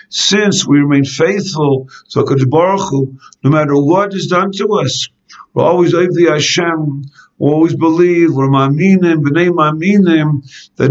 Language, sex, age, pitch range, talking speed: English, male, 50-69, 140-175 Hz, 125 wpm